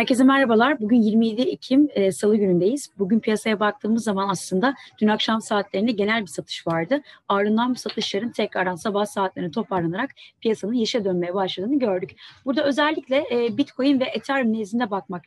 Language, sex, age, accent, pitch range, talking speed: Turkish, female, 30-49, native, 205-265 Hz, 155 wpm